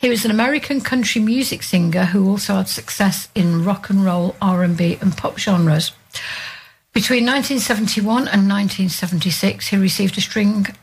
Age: 60-79